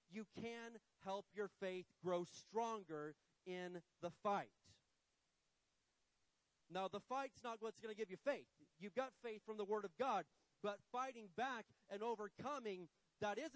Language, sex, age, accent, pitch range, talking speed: English, male, 30-49, American, 195-245 Hz, 155 wpm